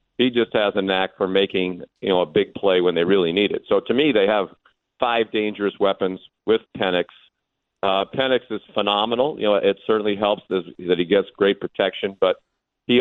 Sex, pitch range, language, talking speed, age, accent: male, 95-110 Hz, English, 200 wpm, 50-69, American